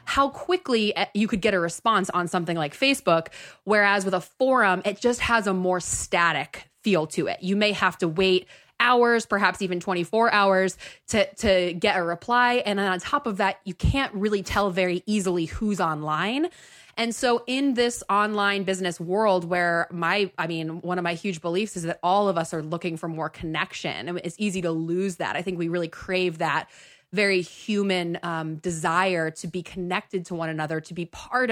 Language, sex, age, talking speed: English, female, 20-39, 195 wpm